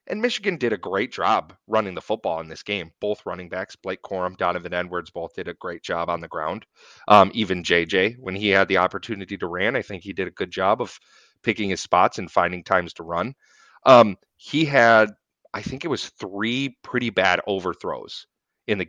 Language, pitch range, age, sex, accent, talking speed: English, 100-140 Hz, 30-49, male, American, 210 wpm